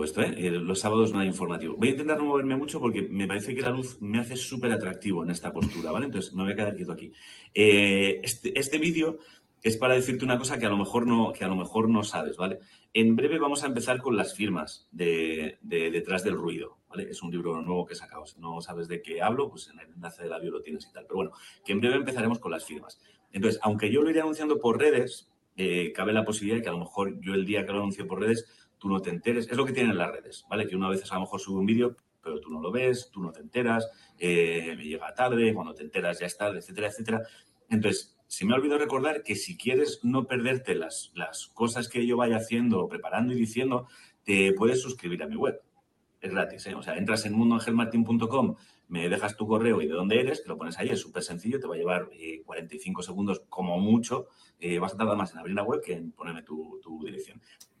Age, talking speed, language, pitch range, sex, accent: 40-59, 250 wpm, English, 95-125 Hz, male, Spanish